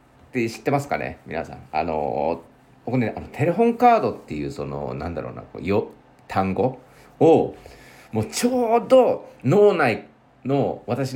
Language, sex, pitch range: Japanese, male, 105-155 Hz